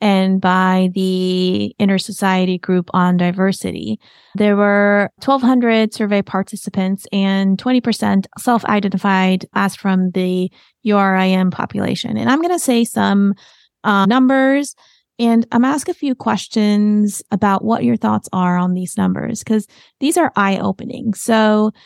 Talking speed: 135 wpm